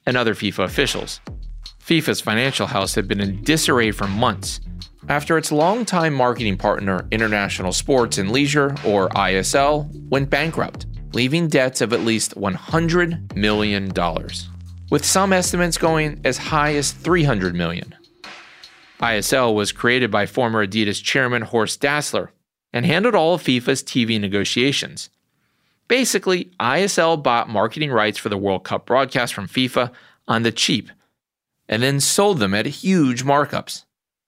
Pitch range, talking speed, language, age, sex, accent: 105-150 Hz, 140 wpm, English, 30-49, male, American